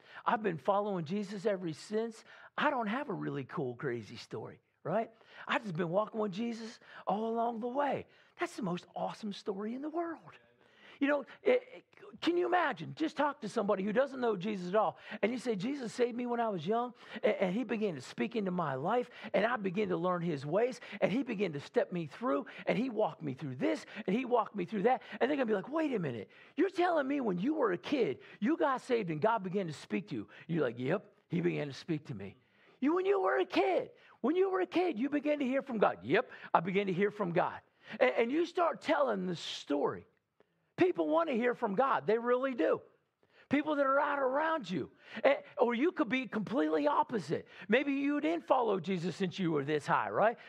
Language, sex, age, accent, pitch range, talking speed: English, male, 50-69, American, 195-275 Hz, 230 wpm